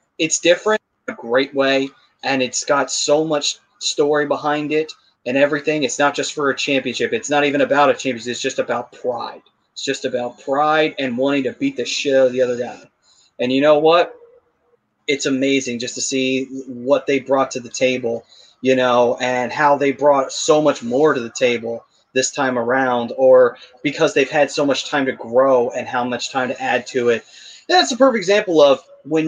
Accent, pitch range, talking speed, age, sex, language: American, 125-150 Hz, 205 wpm, 30-49, male, English